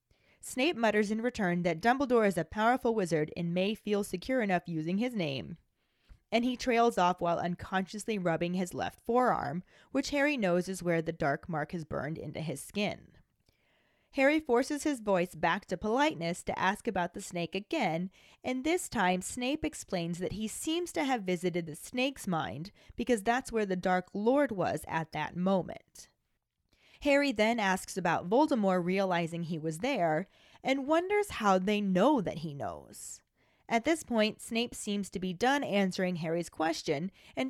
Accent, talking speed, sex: American, 170 wpm, female